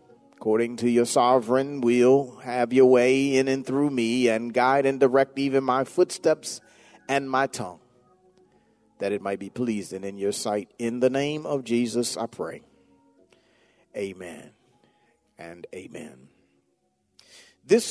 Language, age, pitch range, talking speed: English, 40-59, 110-135 Hz, 135 wpm